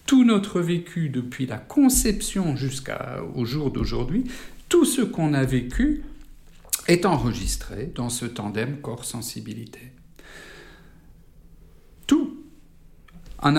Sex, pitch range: male, 115-160 Hz